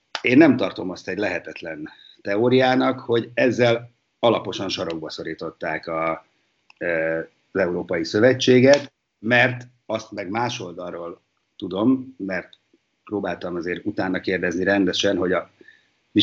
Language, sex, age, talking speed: Hungarian, male, 50-69, 105 wpm